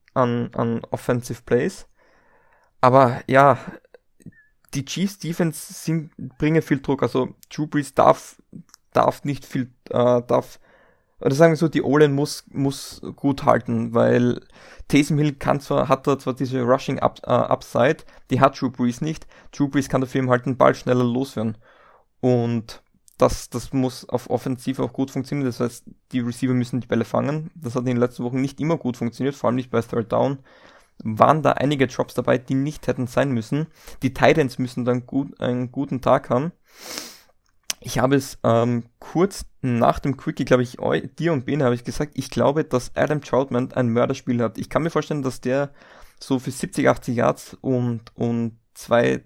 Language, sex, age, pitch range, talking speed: German, male, 20-39, 125-145 Hz, 180 wpm